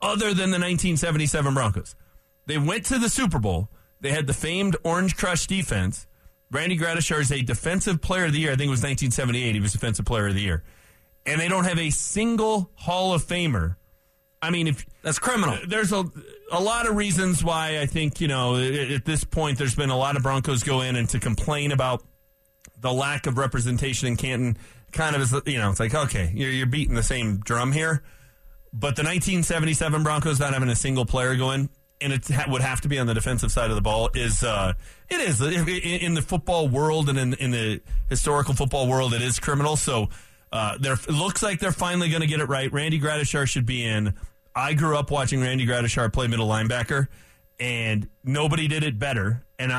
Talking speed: 205 wpm